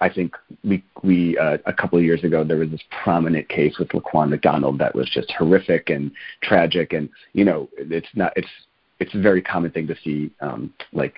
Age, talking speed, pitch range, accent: 40-59, 210 wpm, 85-105 Hz, American